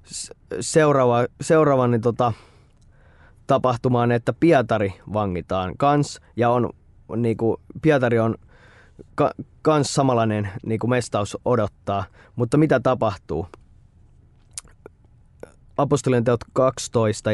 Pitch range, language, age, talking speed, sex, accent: 105-135 Hz, Finnish, 20-39, 90 wpm, male, native